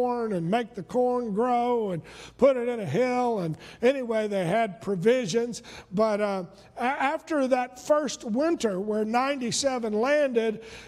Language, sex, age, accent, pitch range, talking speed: English, male, 50-69, American, 215-270 Hz, 140 wpm